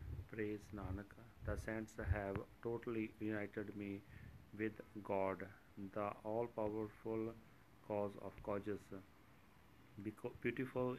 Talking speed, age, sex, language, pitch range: 100 wpm, 40-59, male, Punjabi, 100-110 Hz